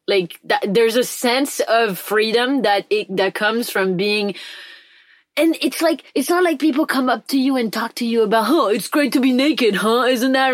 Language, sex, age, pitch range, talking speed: English, female, 20-39, 210-275 Hz, 210 wpm